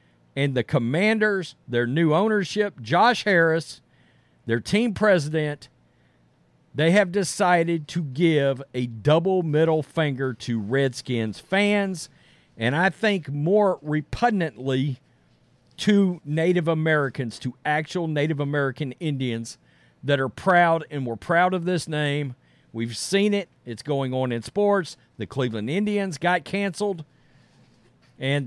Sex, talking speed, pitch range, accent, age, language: male, 125 wpm, 125-175 Hz, American, 50-69, English